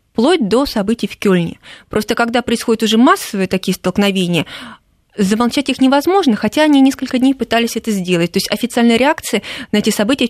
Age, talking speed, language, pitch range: 20-39, 170 wpm, Russian, 190-245 Hz